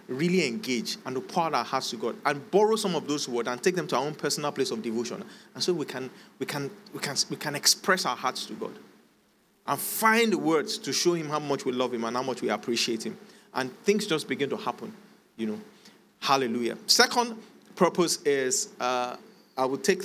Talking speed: 220 wpm